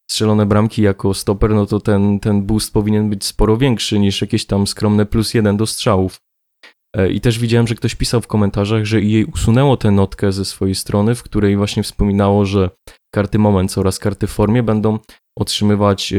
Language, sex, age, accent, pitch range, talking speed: Polish, male, 20-39, native, 100-110 Hz, 185 wpm